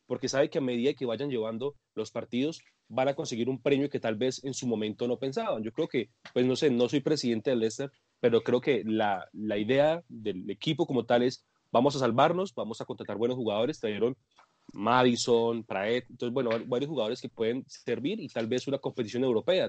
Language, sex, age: Spanish, male, 30-49